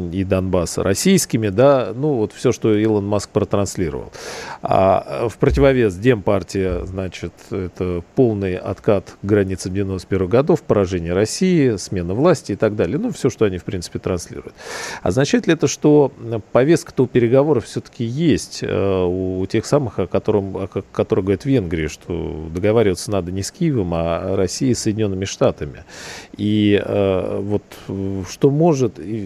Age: 40-59